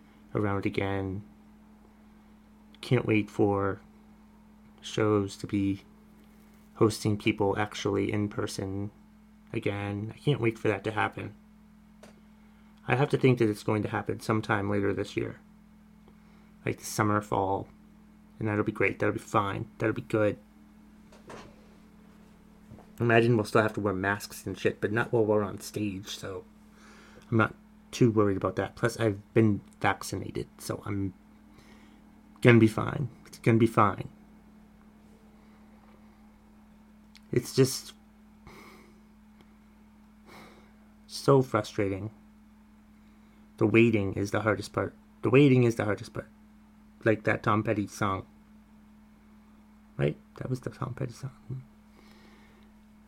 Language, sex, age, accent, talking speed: English, male, 30-49, American, 125 wpm